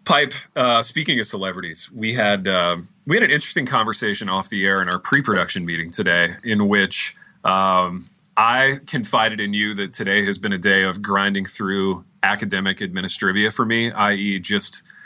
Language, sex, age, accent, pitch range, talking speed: English, male, 30-49, American, 95-115 Hz, 170 wpm